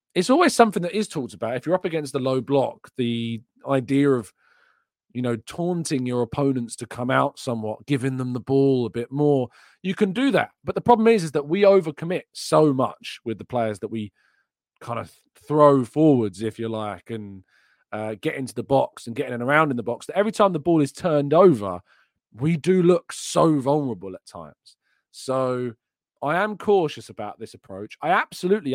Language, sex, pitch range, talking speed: English, male, 110-145 Hz, 200 wpm